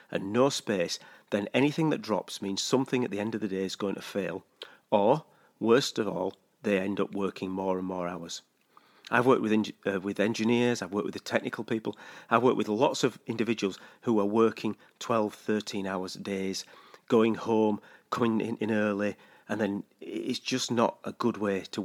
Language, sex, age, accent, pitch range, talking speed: English, male, 40-59, British, 100-125 Hz, 190 wpm